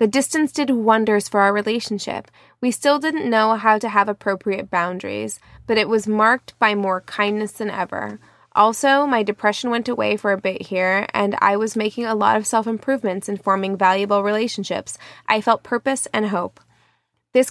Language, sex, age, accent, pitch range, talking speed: English, female, 20-39, American, 195-235 Hz, 180 wpm